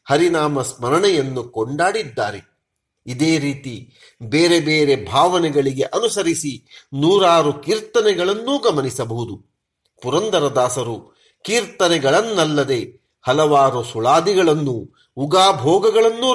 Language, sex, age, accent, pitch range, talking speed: Kannada, male, 40-59, native, 140-210 Hz, 60 wpm